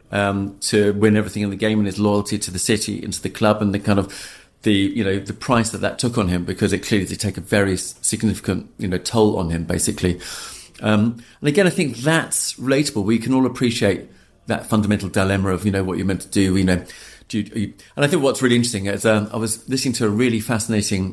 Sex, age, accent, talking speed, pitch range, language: male, 40-59, British, 245 wpm, 100-115 Hz, English